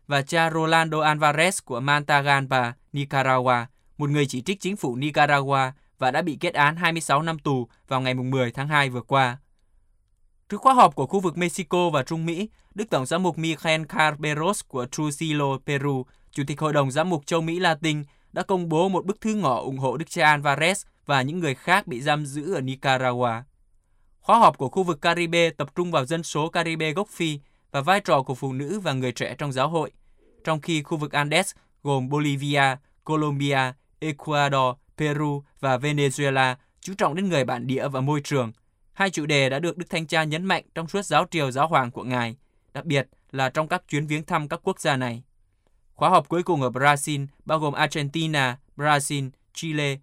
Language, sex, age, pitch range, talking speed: Vietnamese, male, 20-39, 130-165 Hz, 200 wpm